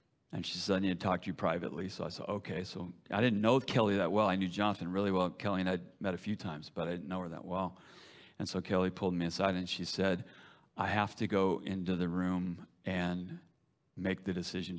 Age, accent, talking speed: 40-59, American, 245 wpm